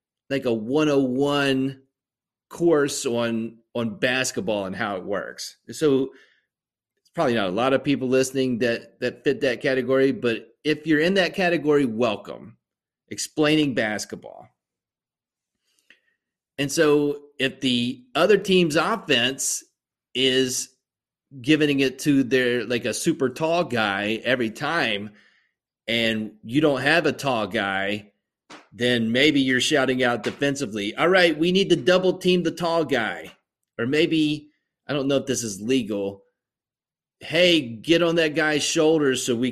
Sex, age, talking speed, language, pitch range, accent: male, 30-49, 140 wpm, English, 125-155 Hz, American